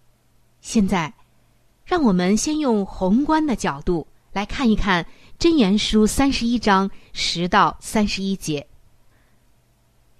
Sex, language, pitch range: female, Chinese, 150-250 Hz